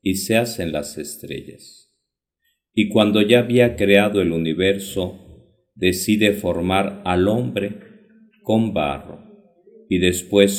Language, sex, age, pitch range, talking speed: Spanish, male, 50-69, 95-125 Hz, 115 wpm